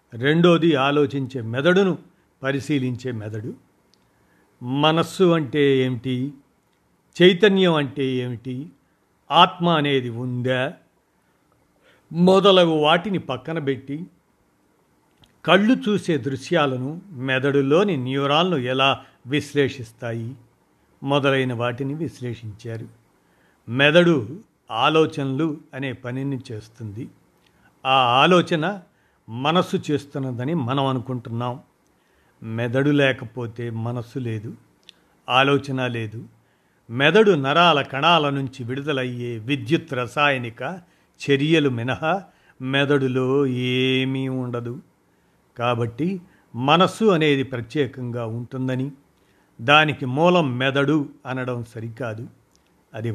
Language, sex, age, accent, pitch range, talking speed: Telugu, male, 60-79, native, 125-155 Hz, 75 wpm